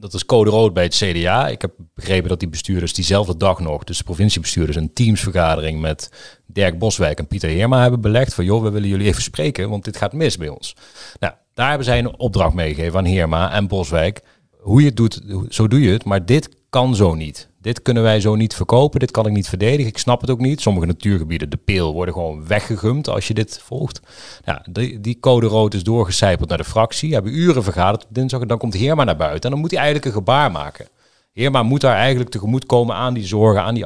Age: 30-49